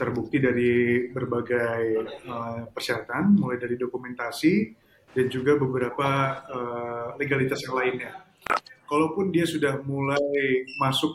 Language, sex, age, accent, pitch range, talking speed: Indonesian, male, 30-49, native, 130-155 Hz, 110 wpm